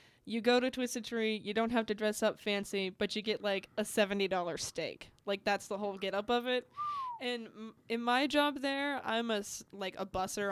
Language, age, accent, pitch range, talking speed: English, 20-39, American, 185-220 Hz, 215 wpm